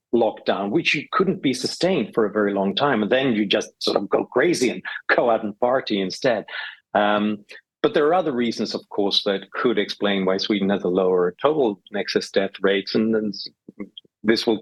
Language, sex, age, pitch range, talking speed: English, male, 40-59, 100-110 Hz, 200 wpm